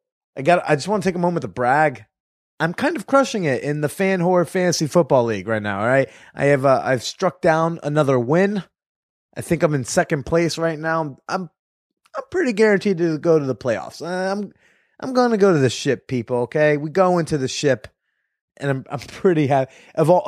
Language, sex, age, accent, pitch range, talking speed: English, male, 20-39, American, 125-170 Hz, 220 wpm